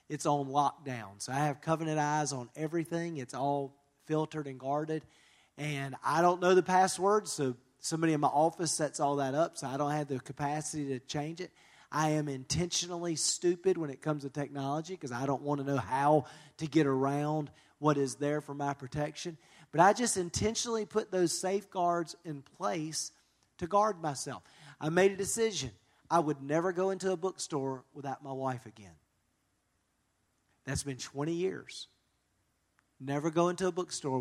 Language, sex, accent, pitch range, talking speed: English, male, American, 140-175 Hz, 175 wpm